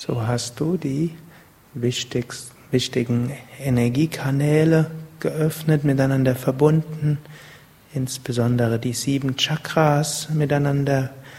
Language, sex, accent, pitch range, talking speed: German, male, German, 135-165 Hz, 75 wpm